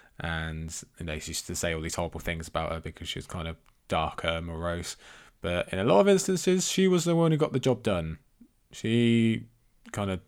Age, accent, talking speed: 20-39, British, 210 wpm